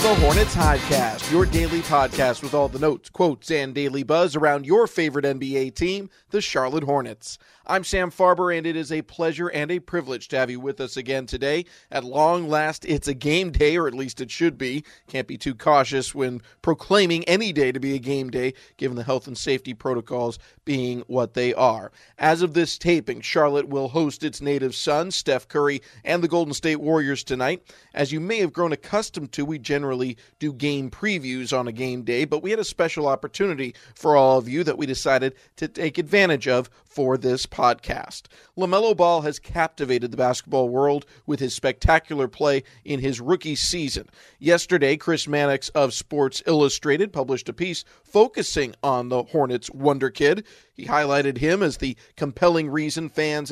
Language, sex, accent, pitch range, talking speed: English, male, American, 130-160 Hz, 190 wpm